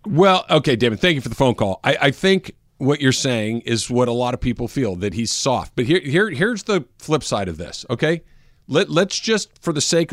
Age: 50-69